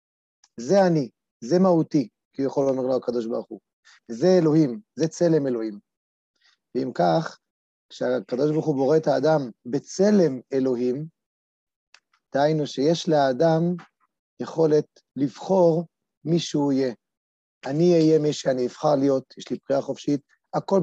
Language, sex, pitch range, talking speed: Hebrew, male, 140-165 Hz, 130 wpm